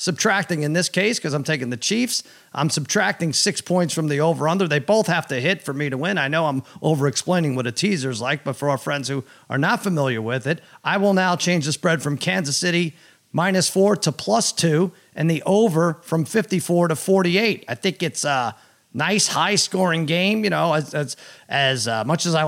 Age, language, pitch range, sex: 40-59, English, 140-185 Hz, male